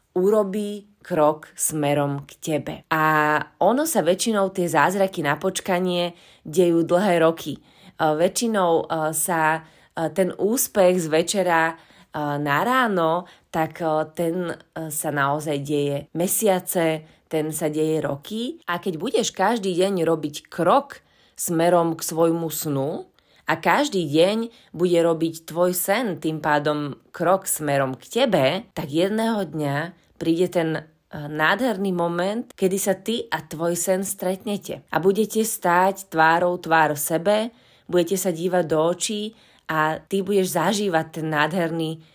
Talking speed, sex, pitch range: 130 wpm, female, 155-190 Hz